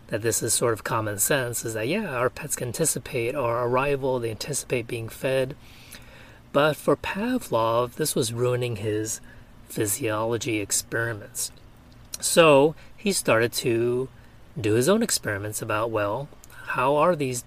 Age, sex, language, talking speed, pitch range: 30-49, male, English, 145 wpm, 115-145 Hz